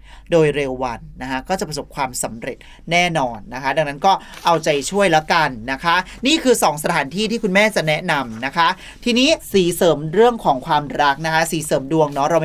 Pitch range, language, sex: 145-185 Hz, Thai, male